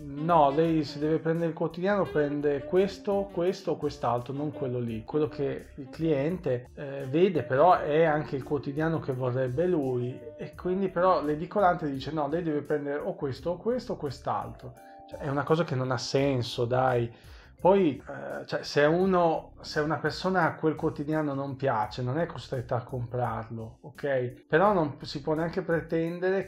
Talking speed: 175 wpm